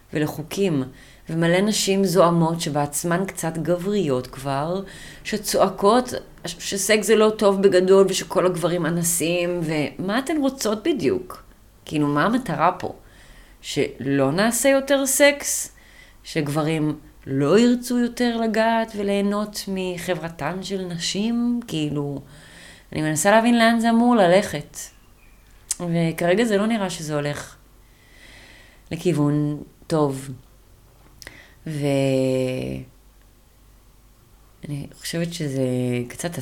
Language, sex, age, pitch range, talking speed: Hebrew, female, 30-49, 135-190 Hz, 95 wpm